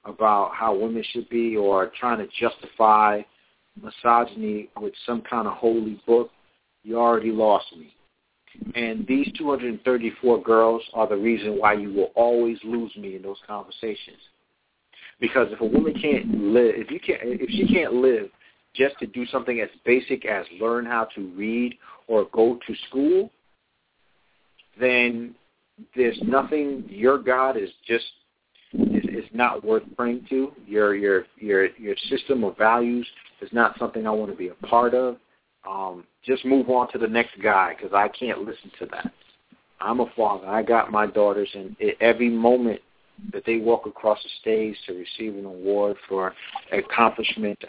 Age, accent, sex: 50-69, American, male